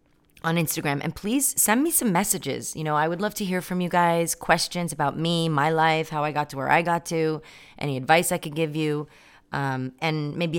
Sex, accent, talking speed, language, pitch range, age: female, American, 225 wpm, English, 140-175 Hz, 30-49